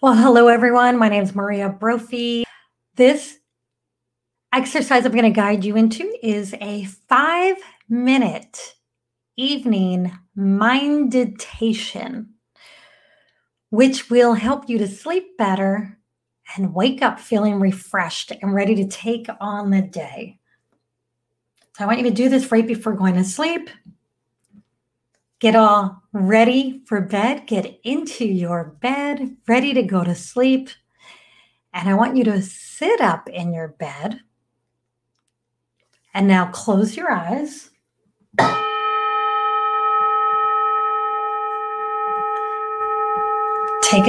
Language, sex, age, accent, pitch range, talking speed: English, female, 30-49, American, 200-285 Hz, 115 wpm